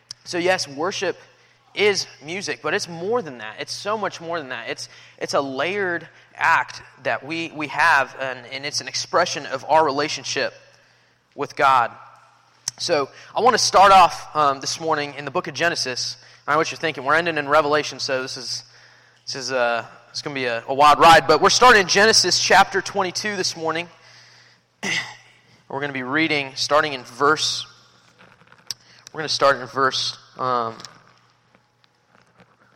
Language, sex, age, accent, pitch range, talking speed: English, male, 20-39, American, 130-165 Hz, 175 wpm